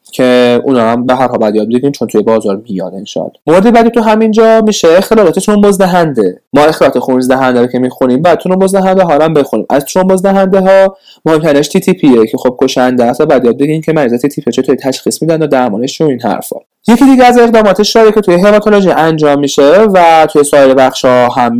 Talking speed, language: 200 wpm, Persian